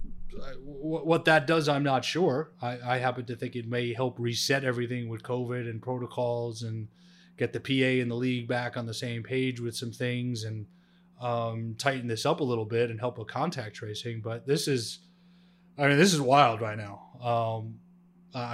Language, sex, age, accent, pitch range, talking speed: English, male, 30-49, American, 120-155 Hz, 190 wpm